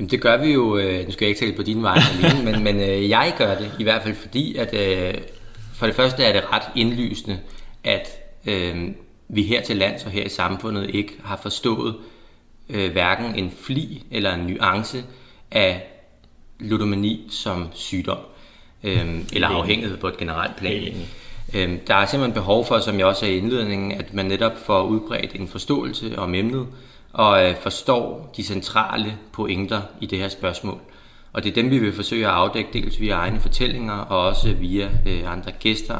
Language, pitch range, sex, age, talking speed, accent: Danish, 95-115 Hz, male, 30-49, 170 wpm, native